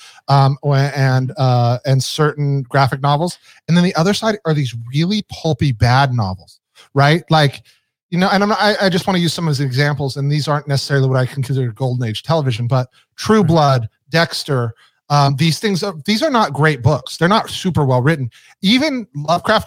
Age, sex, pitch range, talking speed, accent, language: 30-49, male, 135-170 Hz, 200 wpm, American, English